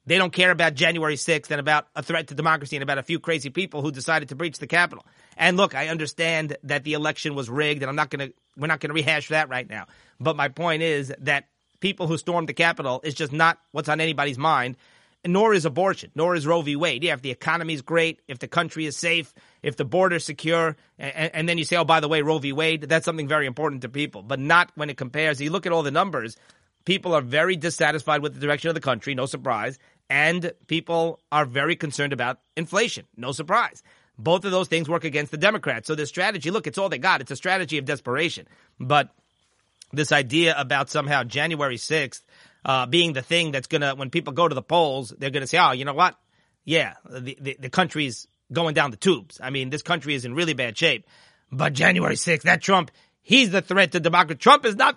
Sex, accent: male, American